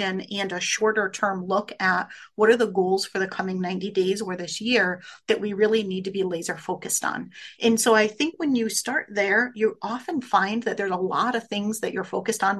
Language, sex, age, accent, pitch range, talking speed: English, female, 30-49, American, 190-225 Hz, 230 wpm